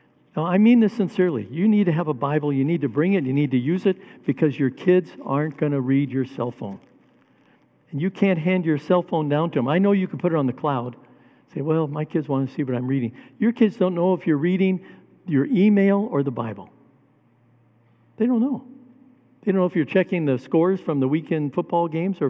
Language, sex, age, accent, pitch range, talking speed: English, male, 60-79, American, 135-185 Hz, 240 wpm